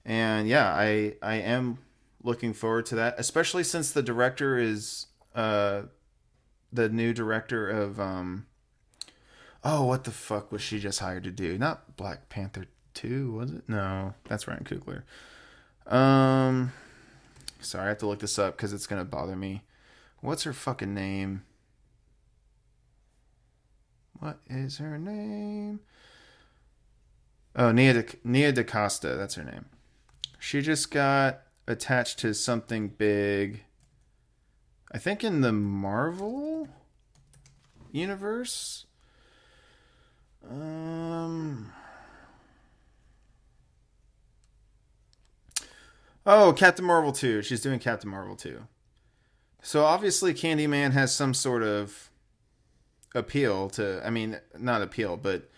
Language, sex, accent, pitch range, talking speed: English, male, American, 105-140 Hz, 115 wpm